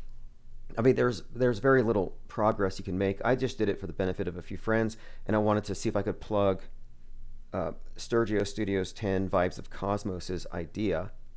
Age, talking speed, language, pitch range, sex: 40-59, 200 wpm, English, 85-115 Hz, male